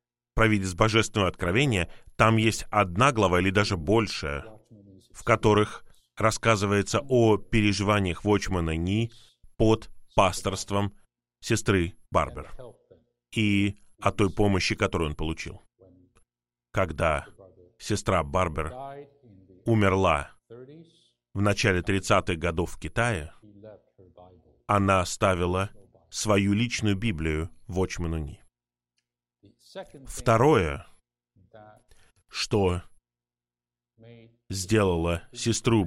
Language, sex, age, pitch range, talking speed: Russian, male, 30-49, 90-115 Hz, 80 wpm